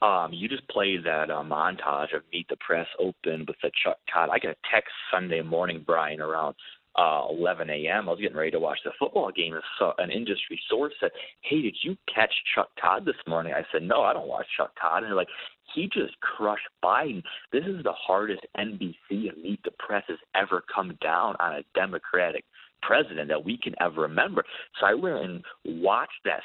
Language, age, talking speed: English, 30-49, 205 wpm